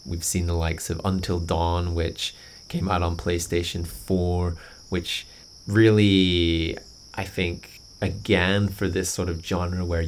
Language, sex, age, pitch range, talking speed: English, male, 20-39, 85-105 Hz, 145 wpm